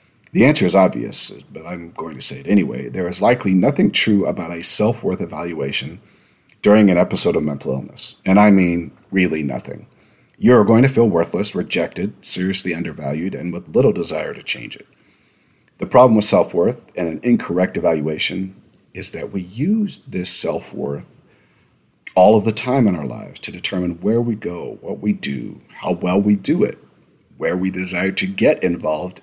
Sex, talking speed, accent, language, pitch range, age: male, 175 wpm, American, English, 90-115 Hz, 40-59